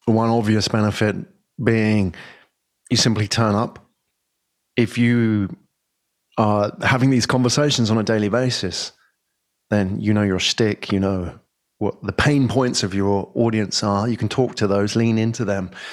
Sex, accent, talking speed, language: male, British, 155 wpm, English